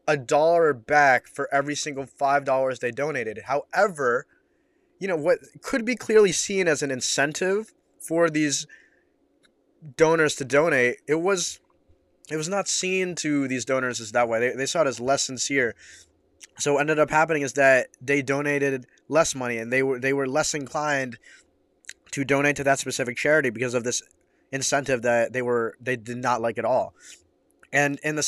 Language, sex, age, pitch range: English, male, 20-39, 130-150 Hz